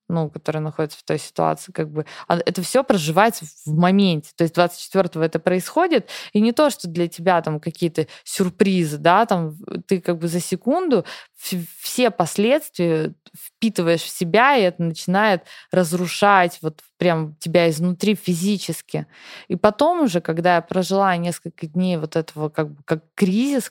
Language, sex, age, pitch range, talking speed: Russian, female, 20-39, 160-195 Hz, 155 wpm